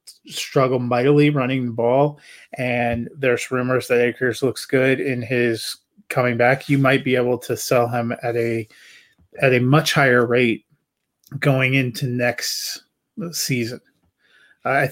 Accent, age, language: American, 30-49, English